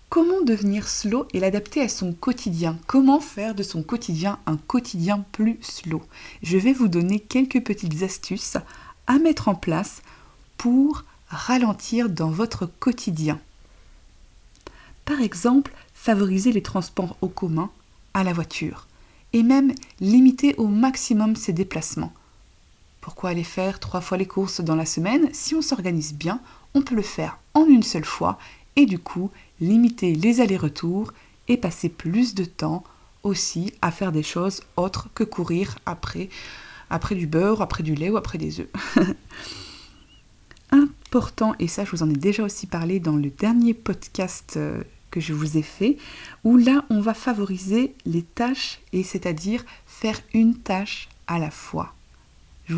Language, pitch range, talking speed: French, 170-235 Hz, 155 wpm